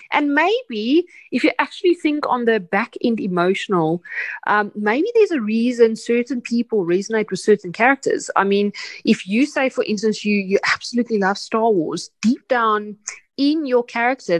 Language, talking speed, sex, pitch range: English, 165 wpm, female, 200-260 Hz